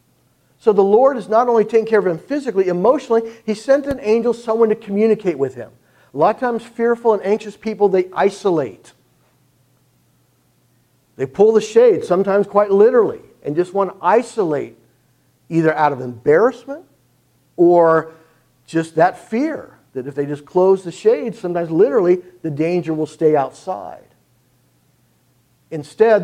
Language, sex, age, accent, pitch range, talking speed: English, male, 50-69, American, 160-220 Hz, 150 wpm